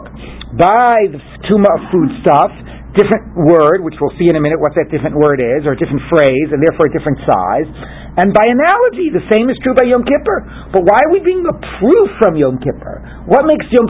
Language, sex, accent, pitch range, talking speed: English, male, American, 160-230 Hz, 215 wpm